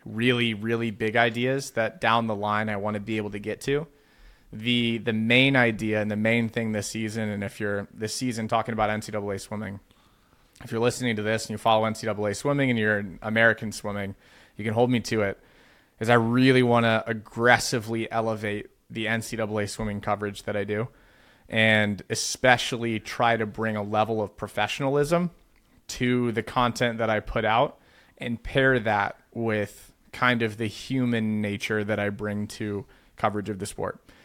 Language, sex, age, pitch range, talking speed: English, male, 30-49, 105-120 Hz, 180 wpm